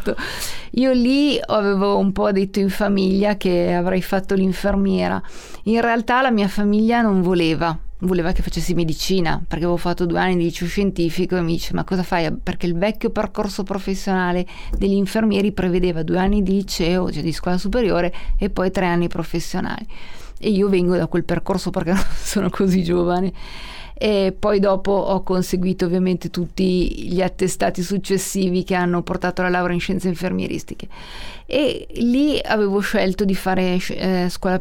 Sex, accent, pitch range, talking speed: female, native, 180-205 Hz, 165 wpm